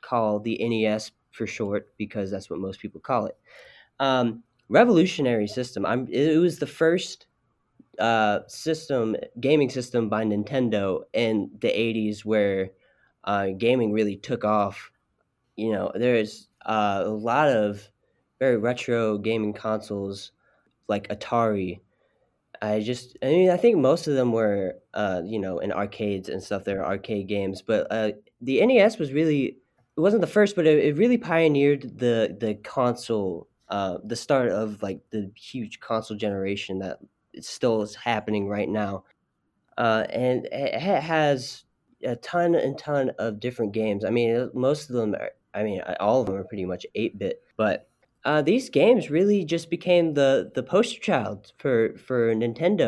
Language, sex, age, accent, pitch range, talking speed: English, male, 20-39, American, 105-135 Hz, 160 wpm